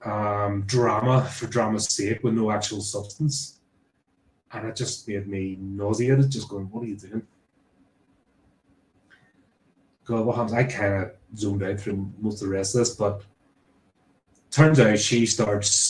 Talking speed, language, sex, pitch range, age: 155 wpm, English, male, 95-110 Hz, 20-39